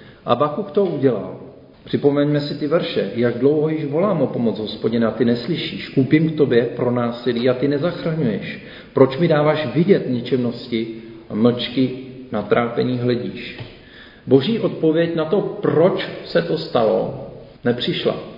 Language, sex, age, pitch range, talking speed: Czech, male, 40-59, 120-155 Hz, 145 wpm